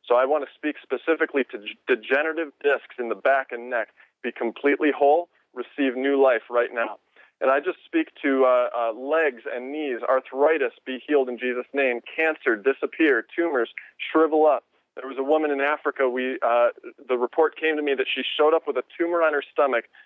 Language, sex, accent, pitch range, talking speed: English, male, American, 130-150 Hz, 195 wpm